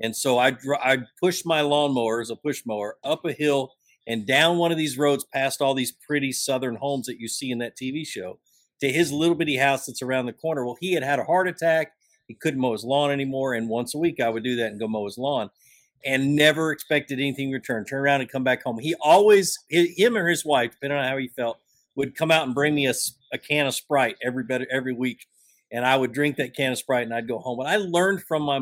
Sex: male